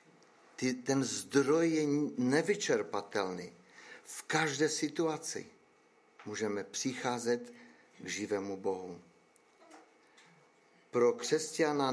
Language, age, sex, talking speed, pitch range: Czech, 50-69, male, 70 wpm, 115-160 Hz